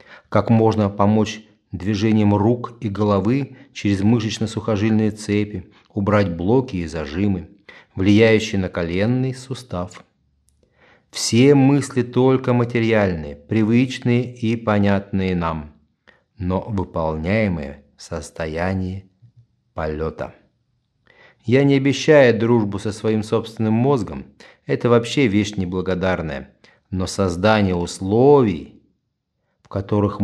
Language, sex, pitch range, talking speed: Russian, male, 90-115 Hz, 95 wpm